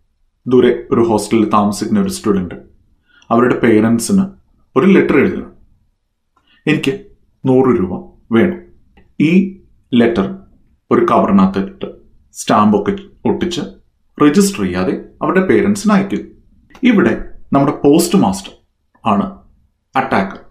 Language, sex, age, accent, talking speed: Malayalam, male, 30-49, native, 95 wpm